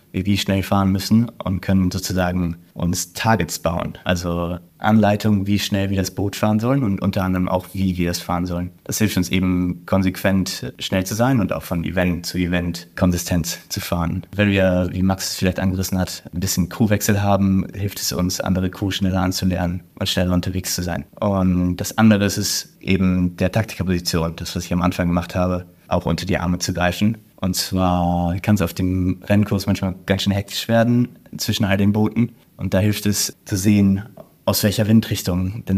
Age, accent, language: 20-39, German, German